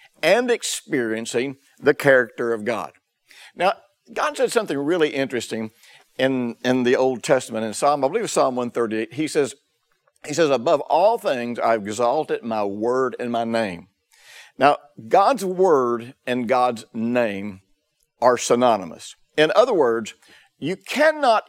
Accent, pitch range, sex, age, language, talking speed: American, 115-155 Hz, male, 60-79, English, 145 wpm